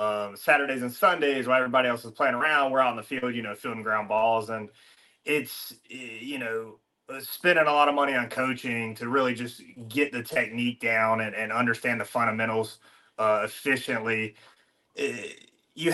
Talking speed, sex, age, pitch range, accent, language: 175 wpm, male, 30-49, 120-160 Hz, American, English